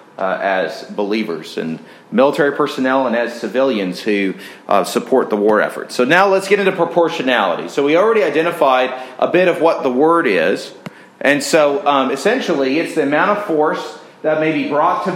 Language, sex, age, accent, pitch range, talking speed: English, male, 30-49, American, 145-190 Hz, 180 wpm